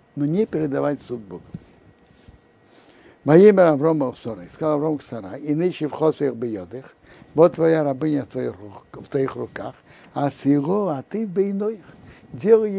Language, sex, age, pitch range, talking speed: Russian, male, 60-79, 140-190 Hz, 130 wpm